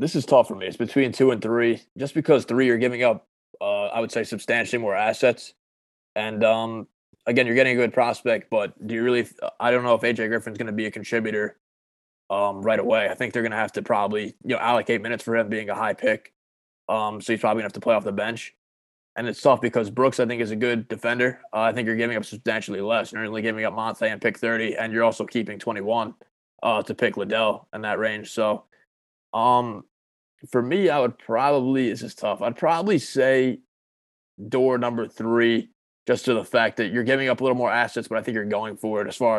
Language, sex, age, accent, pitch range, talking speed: English, male, 20-39, American, 105-120 Hz, 240 wpm